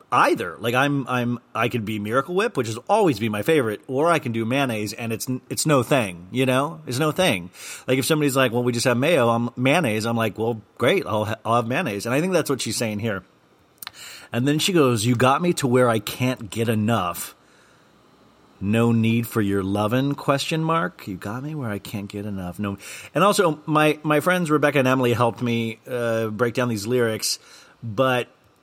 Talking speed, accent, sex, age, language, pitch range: 215 wpm, American, male, 40-59, English, 110-140 Hz